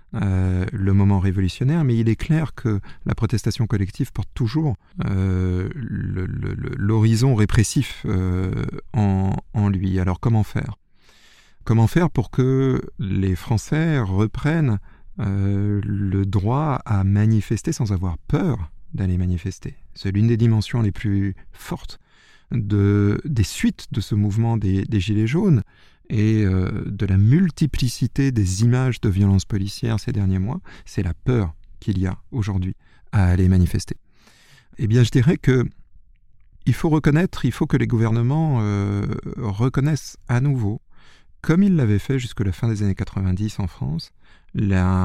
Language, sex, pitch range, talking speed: French, male, 95-125 Hz, 145 wpm